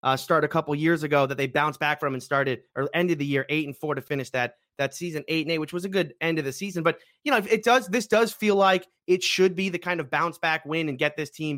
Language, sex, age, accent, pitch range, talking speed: English, male, 30-49, American, 150-185 Hz, 300 wpm